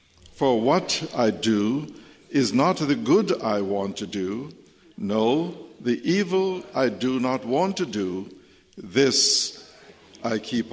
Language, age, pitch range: English, 60-79, 100-145 Hz